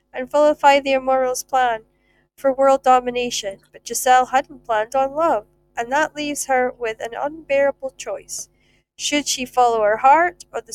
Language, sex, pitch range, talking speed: English, female, 215-280 Hz, 160 wpm